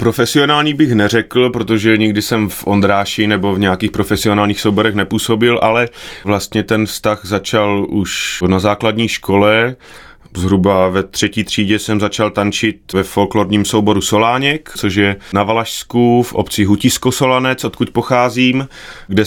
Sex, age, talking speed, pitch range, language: male, 30-49, 140 wpm, 100-115 Hz, Czech